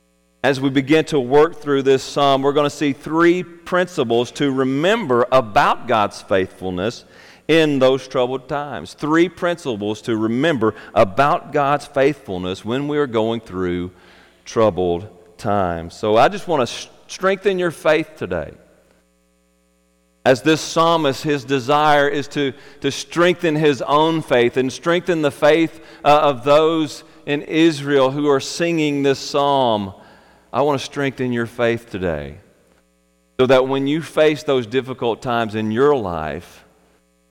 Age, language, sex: 40-59, English, male